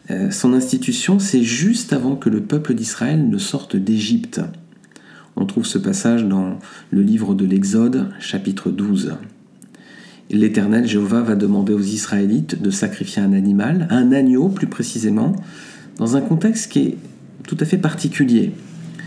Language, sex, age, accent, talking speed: French, male, 50-69, French, 145 wpm